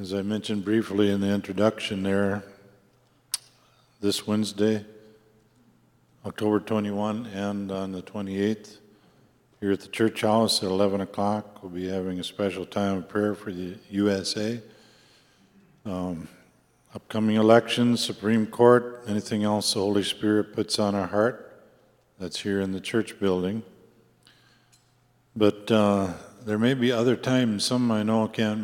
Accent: American